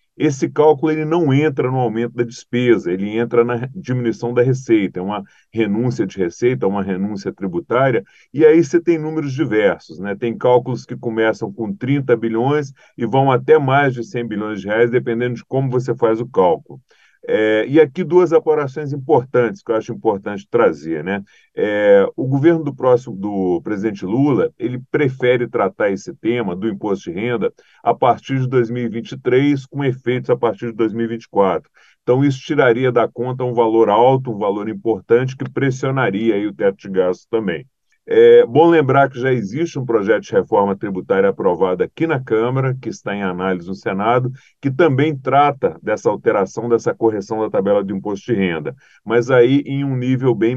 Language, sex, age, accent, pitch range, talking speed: Portuguese, male, 40-59, Brazilian, 115-145 Hz, 175 wpm